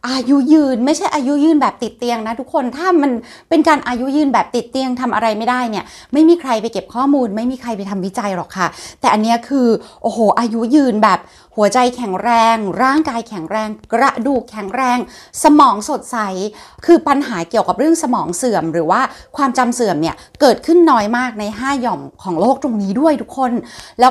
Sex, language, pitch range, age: female, Thai, 195-260 Hz, 20-39